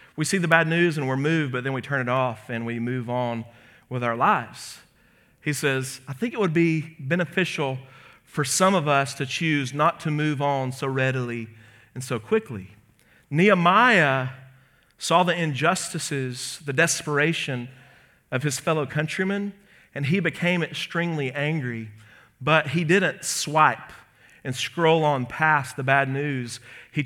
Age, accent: 40-59, American